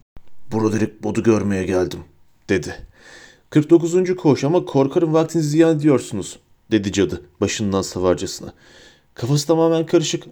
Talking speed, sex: 110 wpm, male